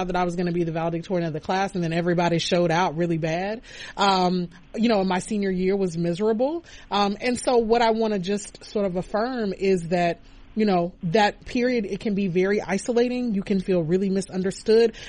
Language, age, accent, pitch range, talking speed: English, 30-49, American, 180-230 Hz, 210 wpm